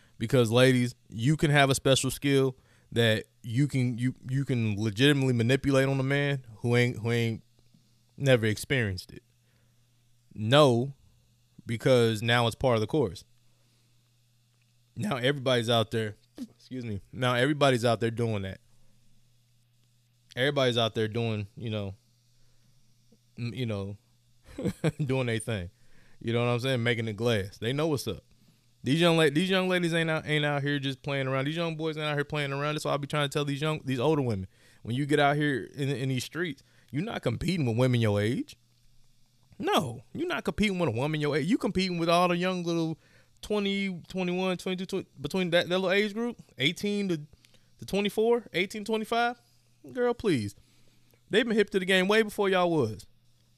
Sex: male